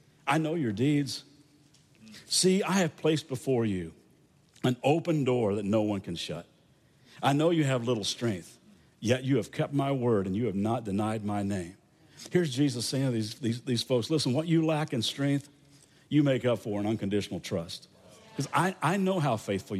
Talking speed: 190 wpm